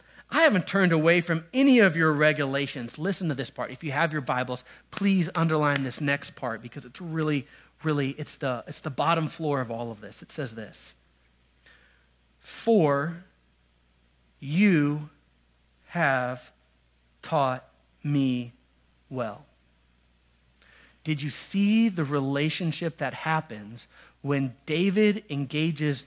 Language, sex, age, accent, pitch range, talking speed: English, male, 40-59, American, 115-165 Hz, 125 wpm